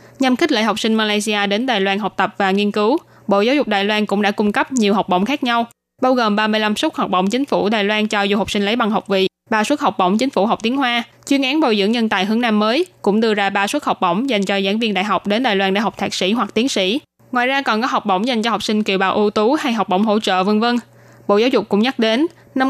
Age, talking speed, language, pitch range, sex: 10-29, 305 wpm, Vietnamese, 200-240 Hz, female